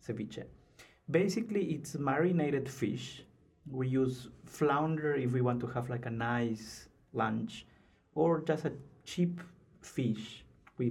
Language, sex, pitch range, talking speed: English, male, 120-140 Hz, 125 wpm